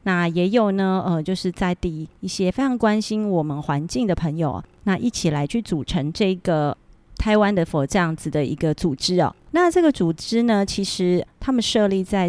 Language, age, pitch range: Chinese, 30-49, 170-210 Hz